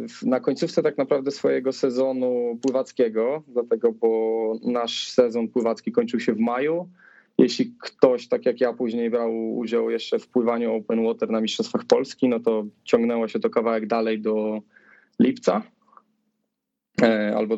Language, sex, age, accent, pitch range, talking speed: Polish, male, 20-39, native, 110-140 Hz, 145 wpm